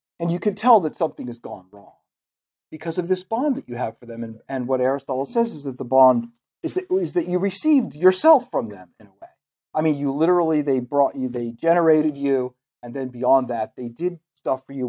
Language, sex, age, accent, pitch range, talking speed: English, male, 40-59, American, 130-180 Hz, 235 wpm